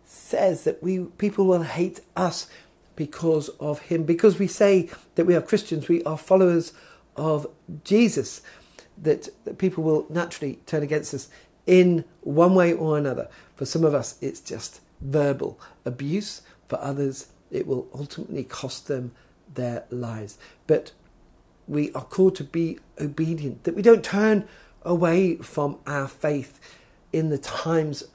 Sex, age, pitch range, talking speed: male, 50-69, 140-170 Hz, 150 wpm